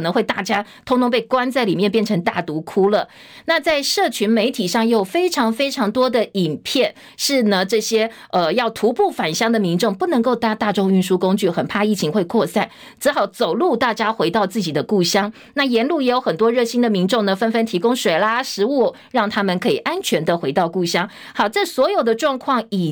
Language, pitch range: Chinese, 185-245 Hz